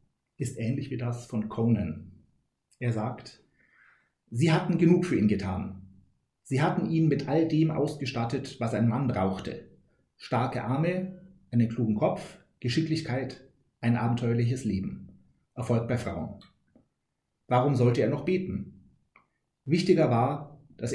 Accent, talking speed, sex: German, 130 wpm, male